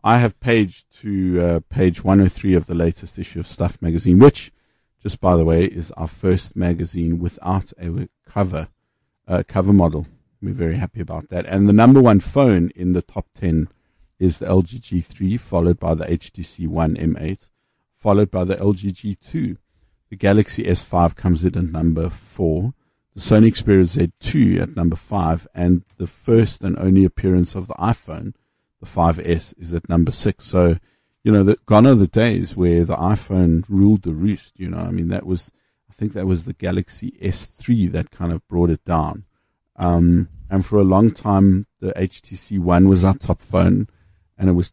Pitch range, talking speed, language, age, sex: 85-105 Hz, 180 wpm, English, 50-69, male